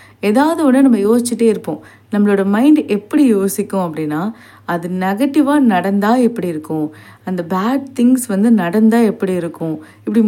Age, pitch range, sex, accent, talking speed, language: 30-49, 185-240 Hz, female, native, 135 wpm, Tamil